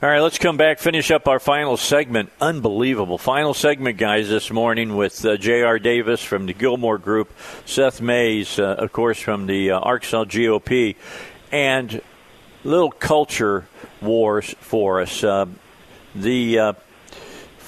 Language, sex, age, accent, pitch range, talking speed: English, male, 50-69, American, 115-145 Hz, 145 wpm